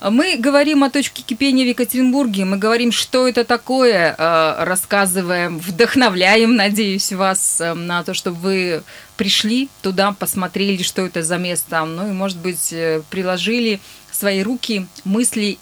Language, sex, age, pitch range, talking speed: Russian, female, 20-39, 175-220 Hz, 135 wpm